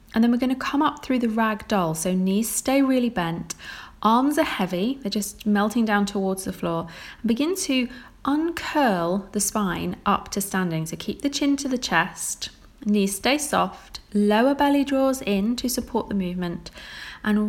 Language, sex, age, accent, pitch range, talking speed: English, female, 30-49, British, 190-240 Hz, 180 wpm